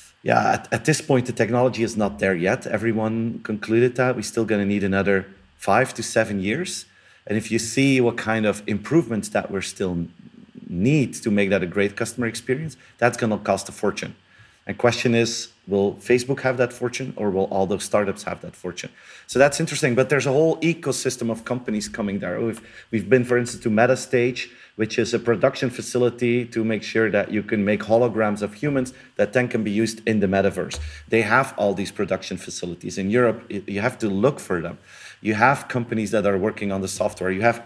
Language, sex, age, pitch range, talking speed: English, male, 40-59, 100-125 Hz, 210 wpm